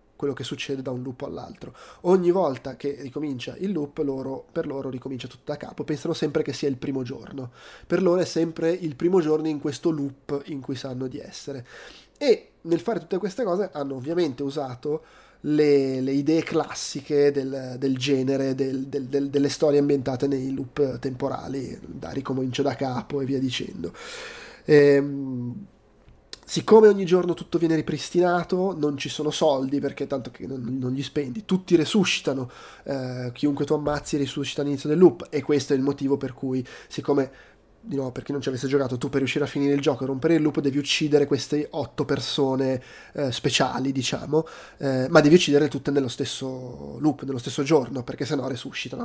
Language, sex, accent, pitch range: Italian, male, native, 135-155 Hz